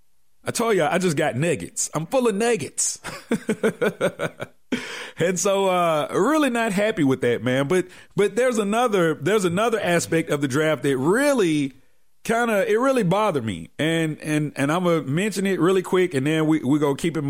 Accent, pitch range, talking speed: American, 135-195 Hz, 195 wpm